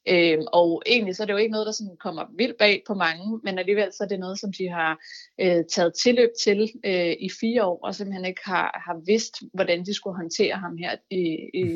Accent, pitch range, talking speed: native, 165-210 Hz, 235 wpm